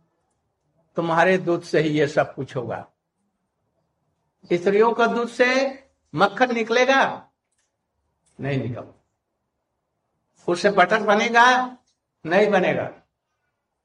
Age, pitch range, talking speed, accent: 60-79, 165-210 Hz, 90 wpm, native